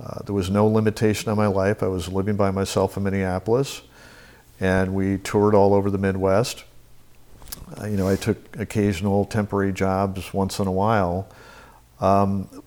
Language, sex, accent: English, male, American